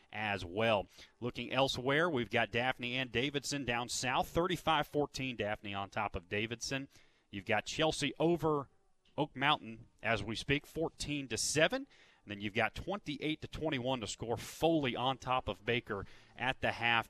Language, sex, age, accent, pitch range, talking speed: English, male, 30-49, American, 110-145 Hz, 160 wpm